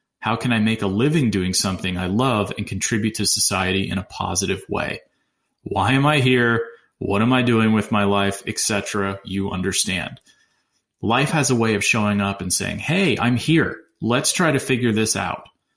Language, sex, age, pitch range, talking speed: English, male, 30-49, 100-120 Hz, 190 wpm